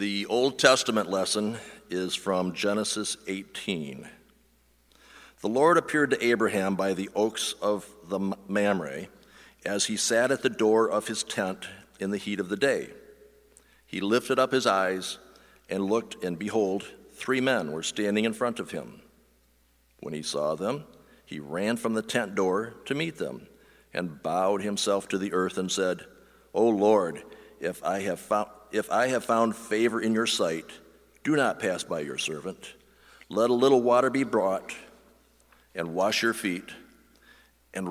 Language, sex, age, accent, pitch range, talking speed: English, male, 60-79, American, 85-110 Hz, 165 wpm